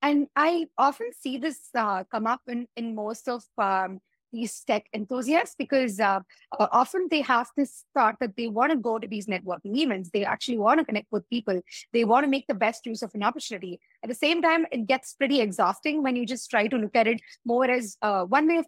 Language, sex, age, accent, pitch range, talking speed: English, female, 20-39, Indian, 225-290 Hz, 230 wpm